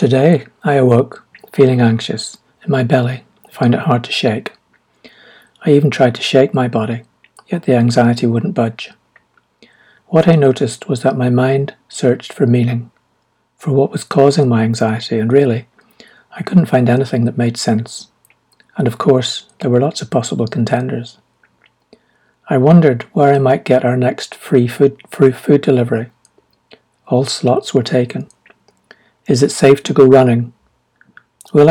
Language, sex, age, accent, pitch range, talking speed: English, male, 60-79, British, 120-140 Hz, 155 wpm